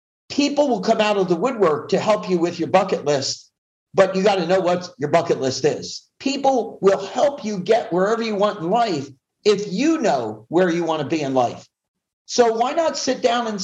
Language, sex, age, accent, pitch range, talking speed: English, male, 50-69, American, 180-225 Hz, 220 wpm